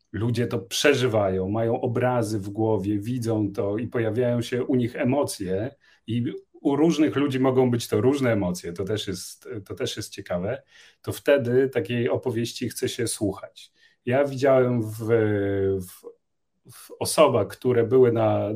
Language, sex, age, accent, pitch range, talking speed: Polish, male, 40-59, native, 105-130 Hz, 145 wpm